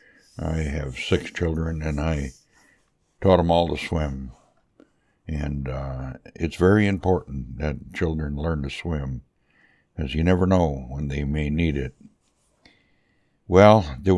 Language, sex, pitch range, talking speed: English, male, 70-90 Hz, 135 wpm